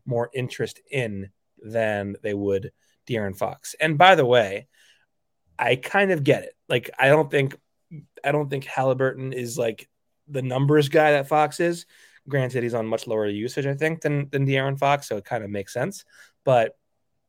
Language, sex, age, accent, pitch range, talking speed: English, male, 20-39, American, 115-145 Hz, 180 wpm